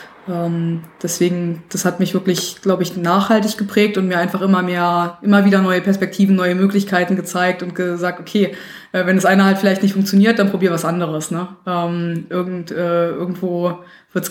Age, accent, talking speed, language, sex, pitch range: 20-39, German, 170 wpm, German, female, 180-205 Hz